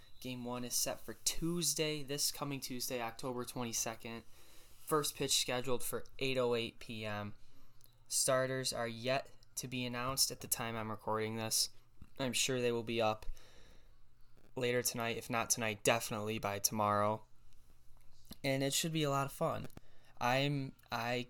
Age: 10-29